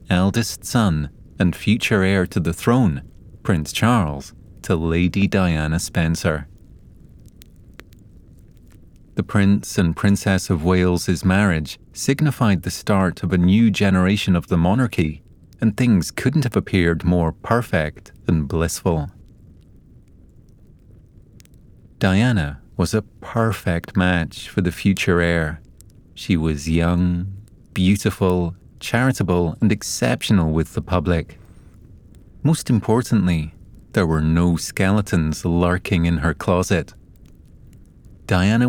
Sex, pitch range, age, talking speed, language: male, 85-100 Hz, 30-49, 110 wpm, English